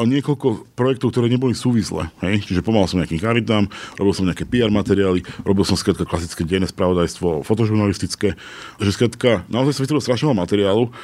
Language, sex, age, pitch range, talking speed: Slovak, male, 40-59, 100-125 Hz, 165 wpm